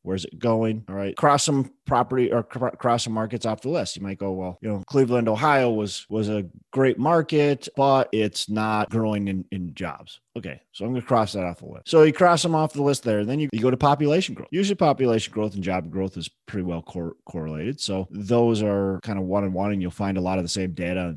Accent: American